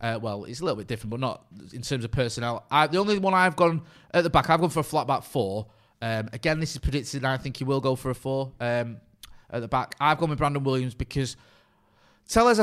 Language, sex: English, male